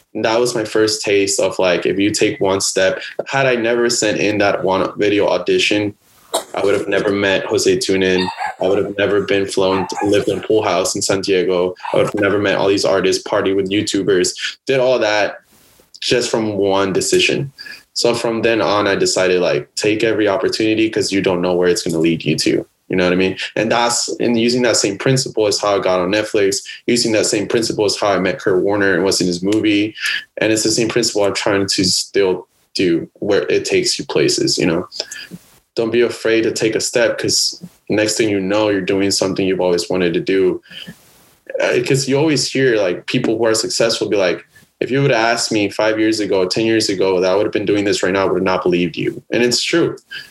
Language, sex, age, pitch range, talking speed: English, male, 20-39, 100-135 Hz, 230 wpm